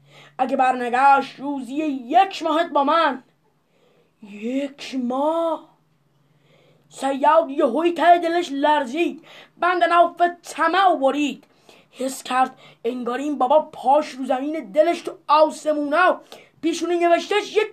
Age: 20-39